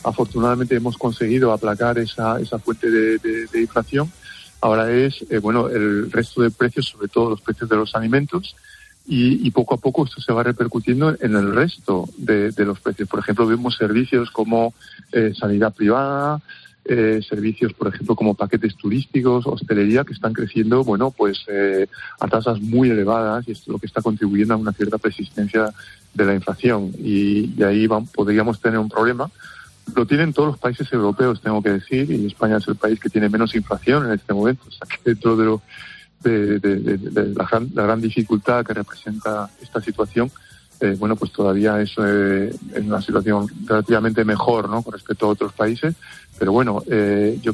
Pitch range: 105-120 Hz